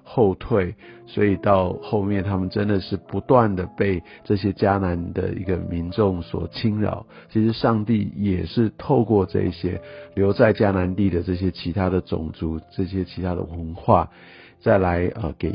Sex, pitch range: male, 90-110 Hz